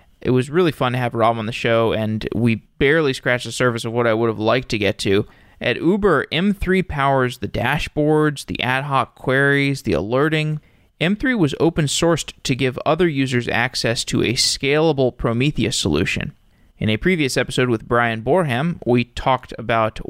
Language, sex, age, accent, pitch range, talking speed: English, male, 20-39, American, 115-140 Hz, 180 wpm